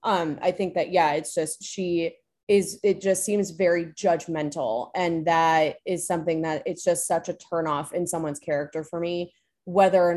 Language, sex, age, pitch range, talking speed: English, female, 20-39, 160-185 Hz, 185 wpm